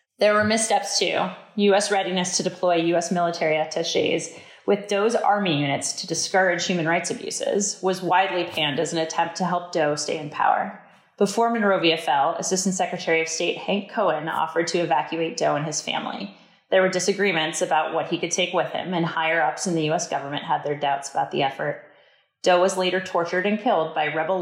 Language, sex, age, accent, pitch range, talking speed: English, female, 30-49, American, 160-195 Hz, 190 wpm